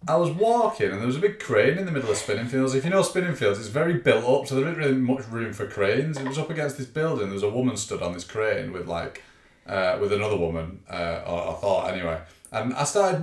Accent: British